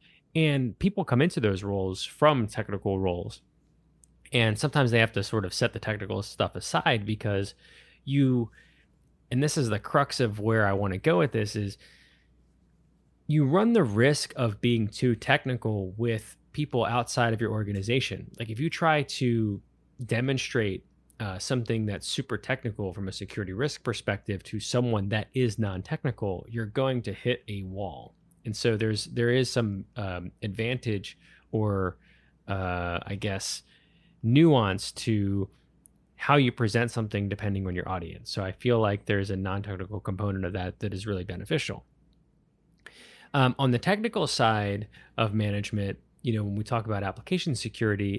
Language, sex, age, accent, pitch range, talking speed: English, male, 20-39, American, 100-125 Hz, 160 wpm